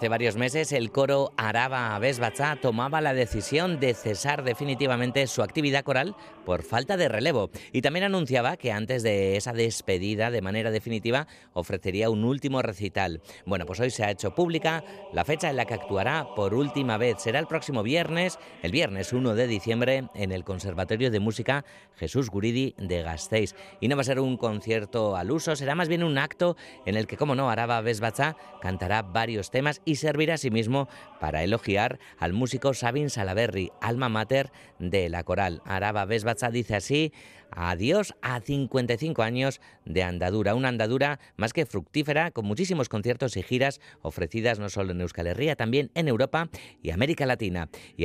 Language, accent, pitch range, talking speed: Spanish, Spanish, 105-140 Hz, 180 wpm